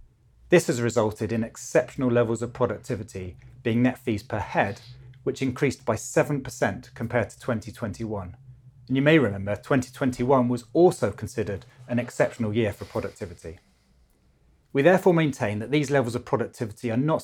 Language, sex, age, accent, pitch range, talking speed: English, male, 30-49, British, 105-130 Hz, 150 wpm